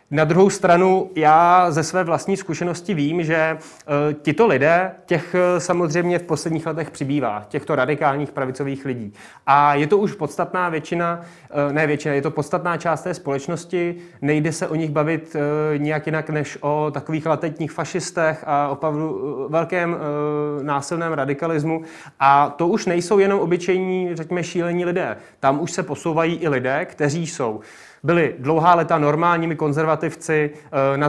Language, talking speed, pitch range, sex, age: Czech, 155 wpm, 150-175 Hz, male, 30-49